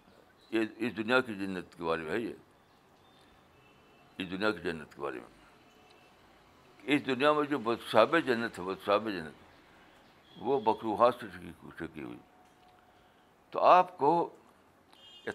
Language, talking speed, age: Urdu, 130 wpm, 60-79